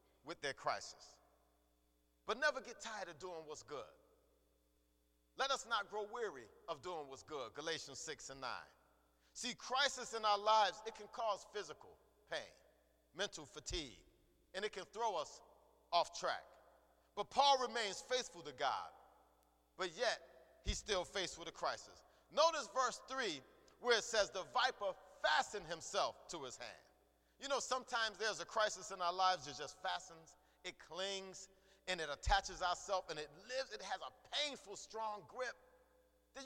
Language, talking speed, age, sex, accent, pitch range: English, 160 wpm, 40-59, male, American, 185-250 Hz